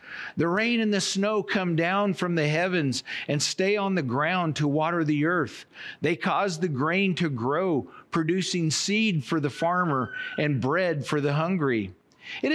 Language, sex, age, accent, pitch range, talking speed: English, male, 50-69, American, 160-215 Hz, 170 wpm